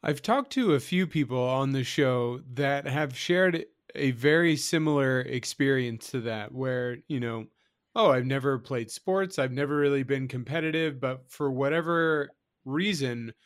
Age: 30-49